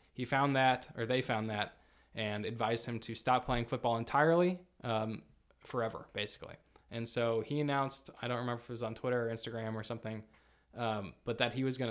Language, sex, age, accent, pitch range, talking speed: English, male, 20-39, American, 115-140 Hz, 200 wpm